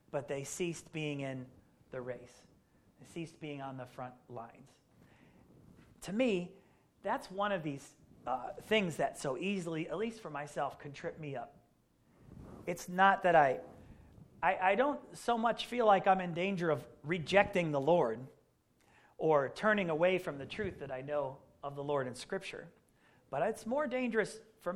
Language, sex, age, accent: English, male, 40-59, American